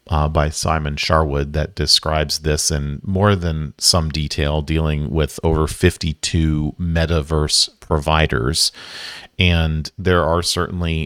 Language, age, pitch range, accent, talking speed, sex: English, 40-59, 75-90 Hz, American, 120 wpm, male